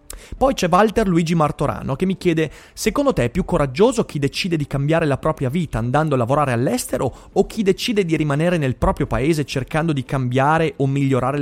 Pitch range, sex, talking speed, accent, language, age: 125-175 Hz, male, 195 wpm, native, Italian, 30-49